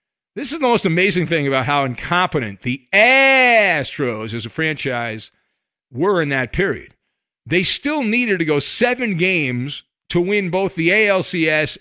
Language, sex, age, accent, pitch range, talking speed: English, male, 50-69, American, 150-220 Hz, 150 wpm